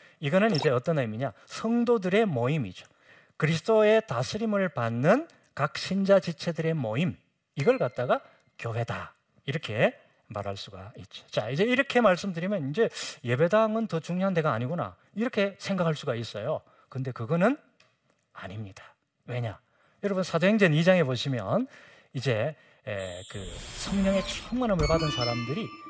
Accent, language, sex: native, Korean, male